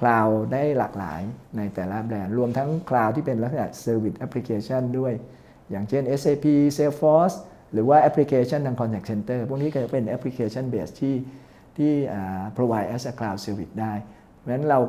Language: Thai